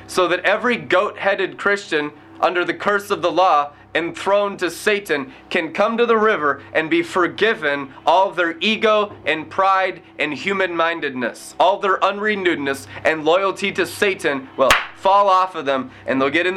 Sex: male